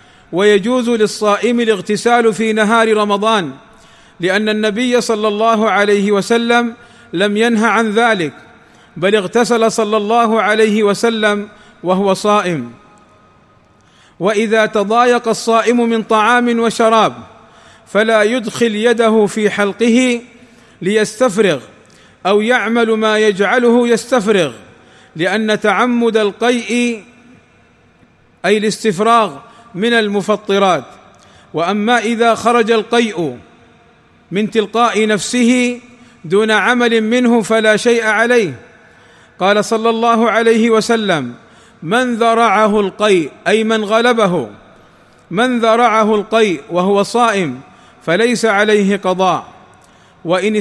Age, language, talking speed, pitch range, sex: 40-59, Arabic, 95 wpm, 210-235 Hz, male